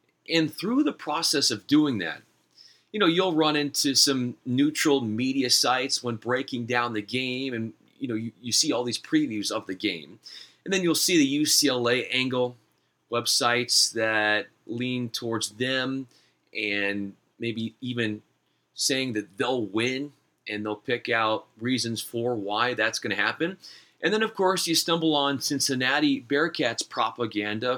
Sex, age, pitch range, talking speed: male, 30-49, 115-150 Hz, 160 wpm